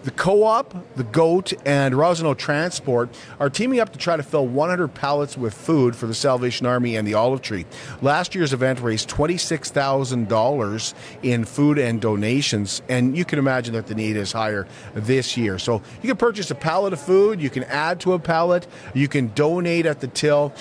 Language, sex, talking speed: English, male, 190 wpm